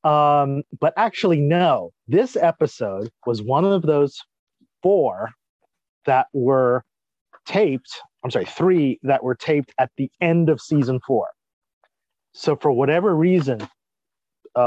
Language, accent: English, American